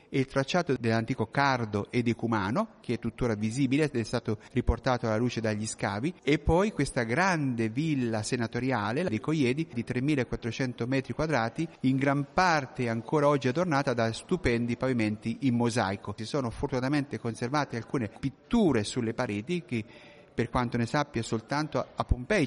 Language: Italian